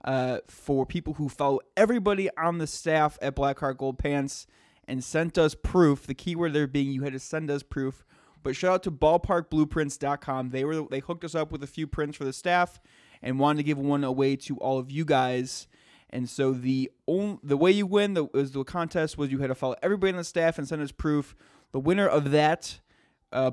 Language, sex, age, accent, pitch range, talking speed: English, male, 20-39, American, 135-160 Hz, 215 wpm